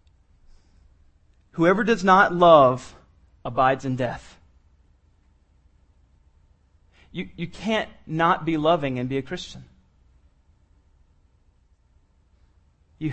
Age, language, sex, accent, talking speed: 30-49, English, male, American, 80 wpm